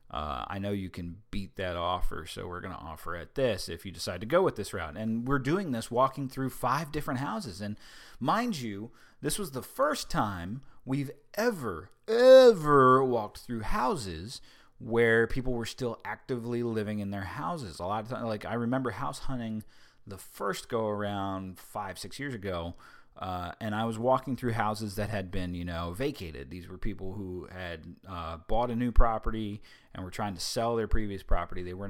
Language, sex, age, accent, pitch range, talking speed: English, male, 30-49, American, 95-125 Hz, 200 wpm